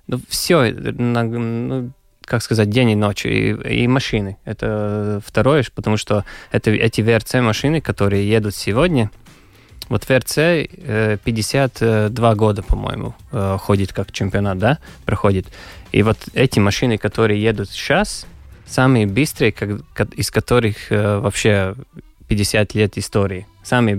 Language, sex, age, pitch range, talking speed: Russian, male, 20-39, 100-120 Hz, 125 wpm